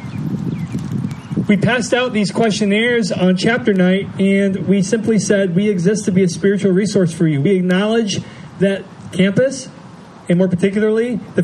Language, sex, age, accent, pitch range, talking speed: English, male, 40-59, American, 175-210 Hz, 150 wpm